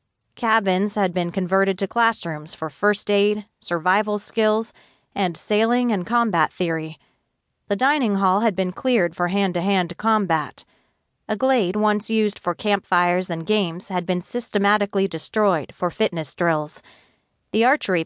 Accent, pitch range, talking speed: American, 170-210 Hz, 145 wpm